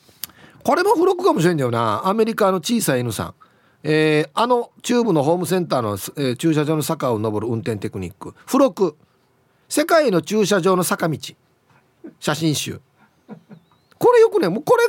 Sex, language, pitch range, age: male, Japanese, 130-200 Hz, 40-59